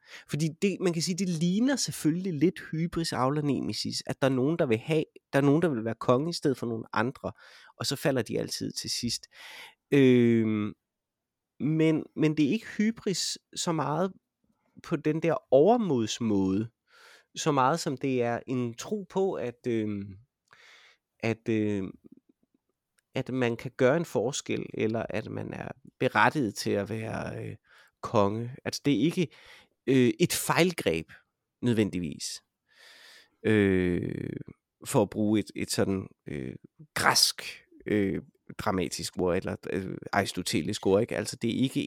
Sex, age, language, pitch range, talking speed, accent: male, 30-49, Danish, 105-155 Hz, 155 wpm, native